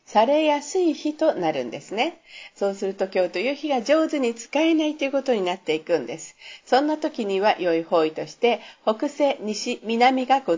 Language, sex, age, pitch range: Japanese, female, 50-69, 190-275 Hz